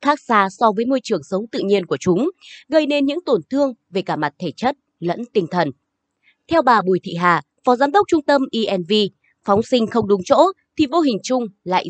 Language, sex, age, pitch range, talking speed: Vietnamese, female, 20-39, 190-285 Hz, 225 wpm